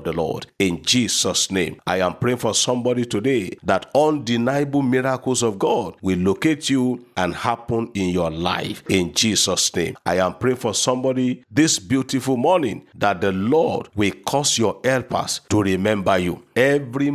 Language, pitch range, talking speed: English, 100-130 Hz, 160 wpm